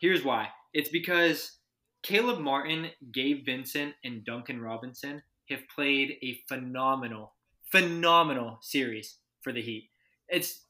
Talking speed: 120 wpm